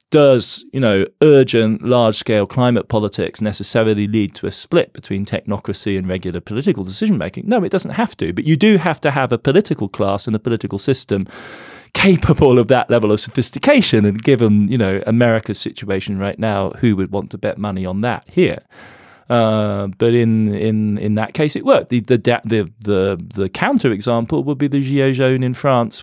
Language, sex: English, male